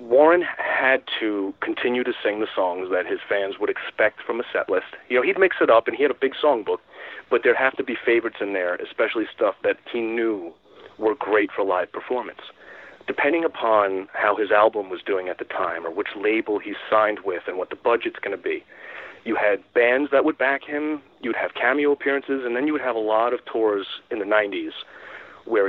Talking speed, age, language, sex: 220 wpm, 40-59, English, male